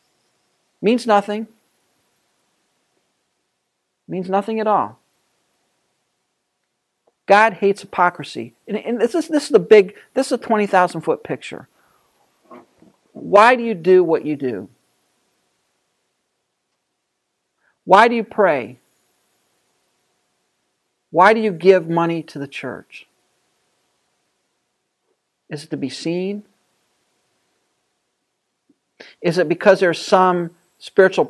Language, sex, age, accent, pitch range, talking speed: English, male, 60-79, American, 145-200 Hz, 100 wpm